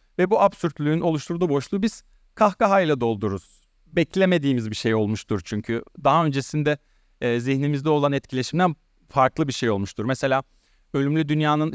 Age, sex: 40-59, male